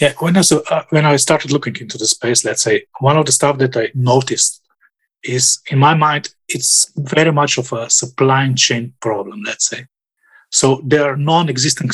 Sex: male